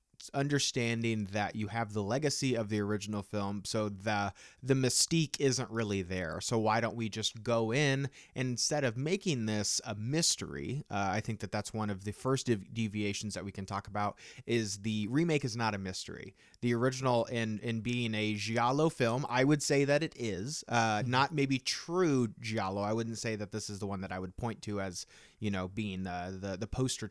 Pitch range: 100-130 Hz